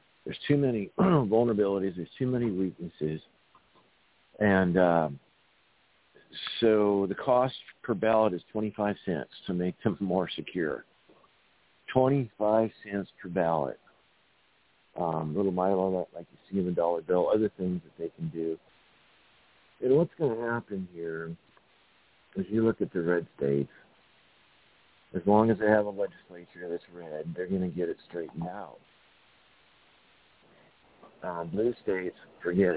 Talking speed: 145 wpm